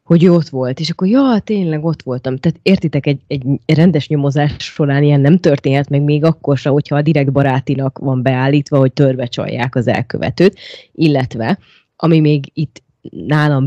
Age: 20-39